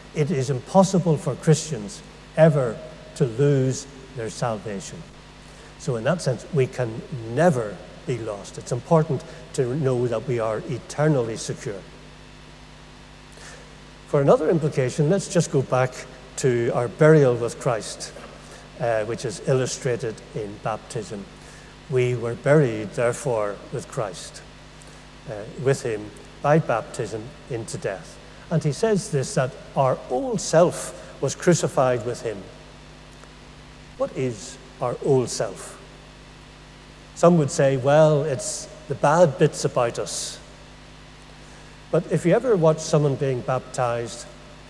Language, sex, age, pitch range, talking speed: English, male, 60-79, 125-155 Hz, 125 wpm